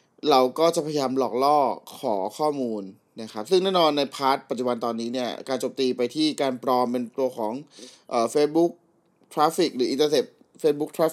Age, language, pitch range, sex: 30-49, Thai, 120-150 Hz, male